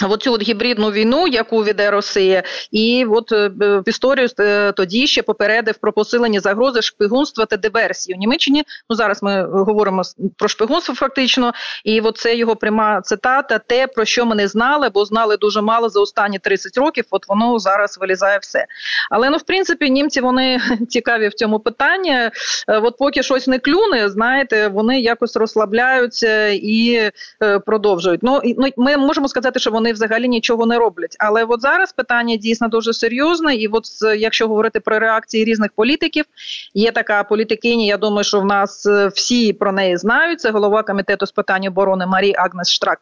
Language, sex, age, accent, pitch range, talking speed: Ukrainian, female, 30-49, native, 205-240 Hz, 175 wpm